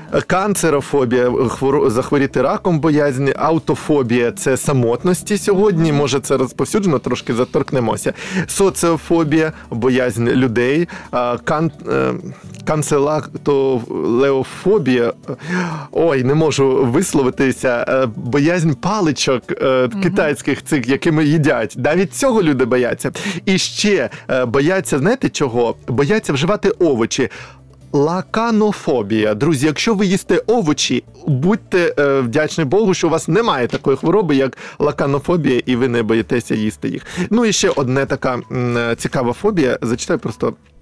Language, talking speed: Ukrainian, 110 wpm